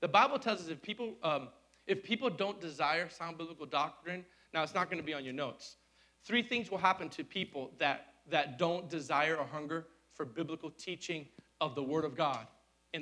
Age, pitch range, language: 40-59, 135-190 Hz, English